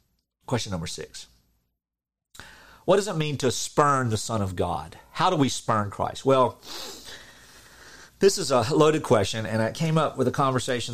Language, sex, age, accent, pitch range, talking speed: English, male, 40-59, American, 95-125 Hz, 170 wpm